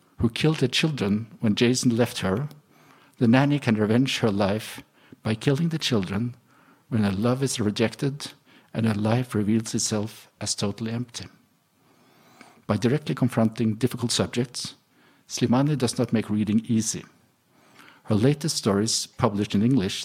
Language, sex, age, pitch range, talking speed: English, male, 50-69, 110-135 Hz, 145 wpm